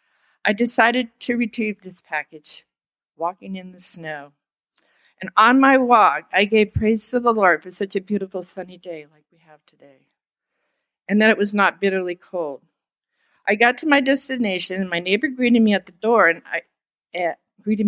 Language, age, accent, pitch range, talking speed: English, 50-69, American, 170-225 Hz, 180 wpm